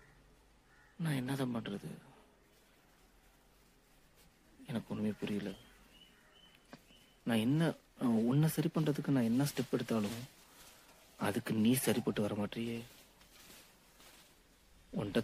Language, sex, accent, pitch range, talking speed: Tamil, male, native, 105-125 Hz, 85 wpm